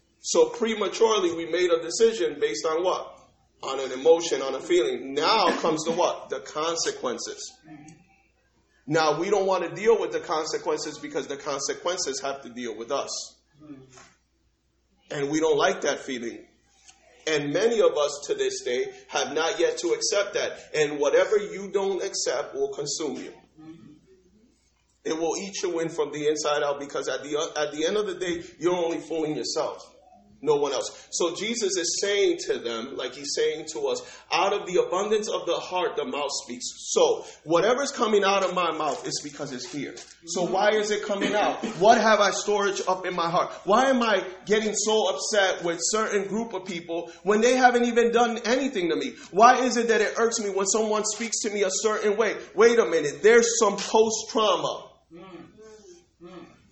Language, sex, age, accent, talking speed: English, male, 40-59, American, 190 wpm